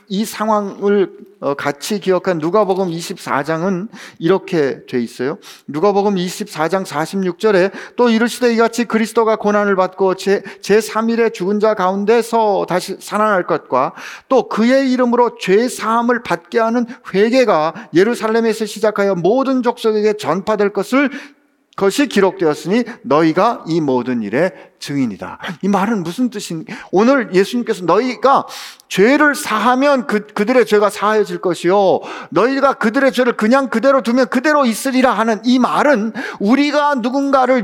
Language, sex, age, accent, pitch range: Korean, male, 40-59, native, 200-265 Hz